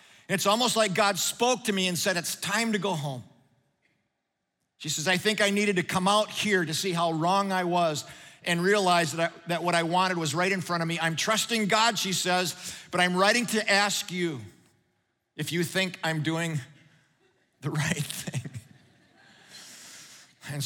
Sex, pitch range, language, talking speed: male, 170-210 Hz, English, 185 wpm